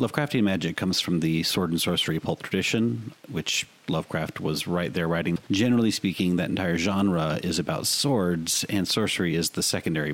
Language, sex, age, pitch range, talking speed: English, male, 30-49, 85-105 Hz, 170 wpm